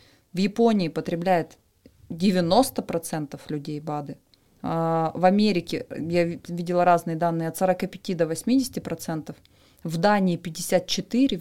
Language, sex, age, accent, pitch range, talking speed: Russian, female, 20-39, native, 175-230 Hz, 100 wpm